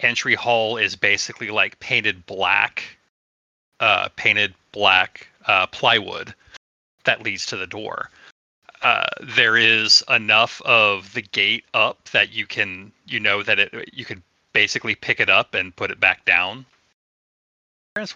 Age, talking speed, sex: 30-49, 145 wpm, male